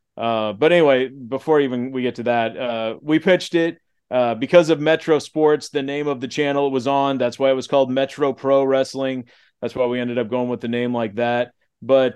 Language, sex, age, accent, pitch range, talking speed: English, male, 30-49, American, 125-155 Hz, 225 wpm